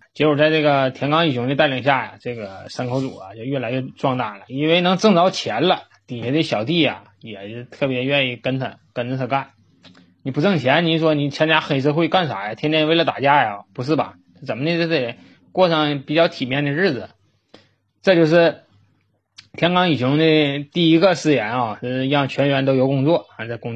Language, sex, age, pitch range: Chinese, male, 20-39, 120-160 Hz